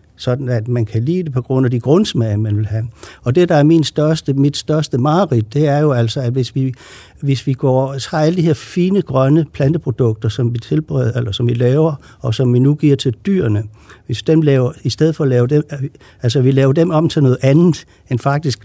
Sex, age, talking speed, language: male, 60-79, 230 wpm, Danish